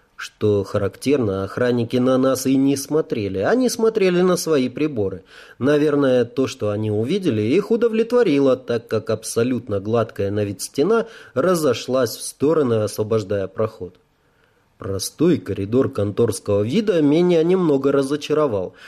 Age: 30-49